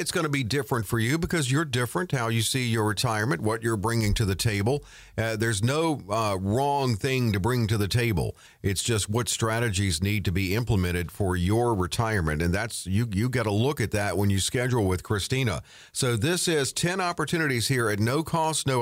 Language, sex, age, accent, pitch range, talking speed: English, male, 50-69, American, 110-145 Hz, 215 wpm